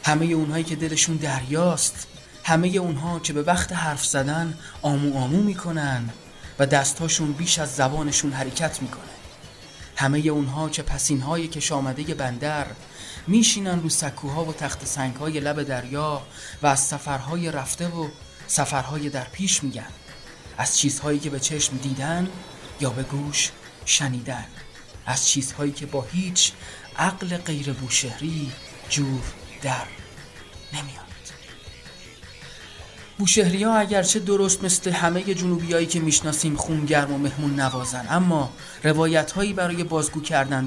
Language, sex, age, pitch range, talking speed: Persian, male, 30-49, 140-165 Hz, 130 wpm